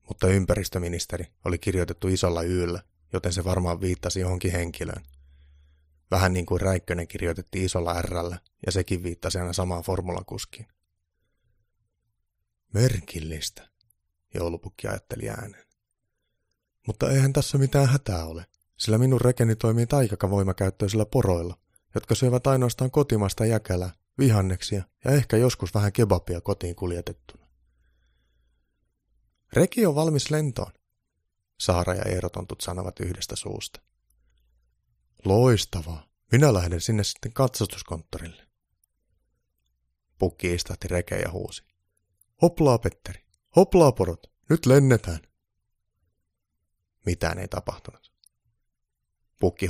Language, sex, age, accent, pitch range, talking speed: Finnish, male, 30-49, native, 85-110 Hz, 105 wpm